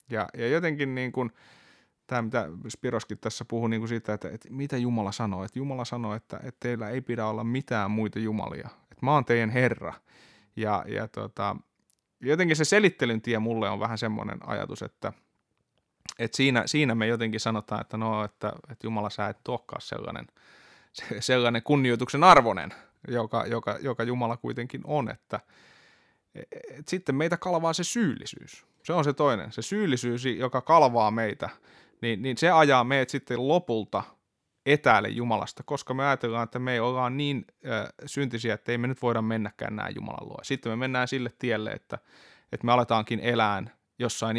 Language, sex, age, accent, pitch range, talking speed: Finnish, male, 20-39, native, 110-135 Hz, 175 wpm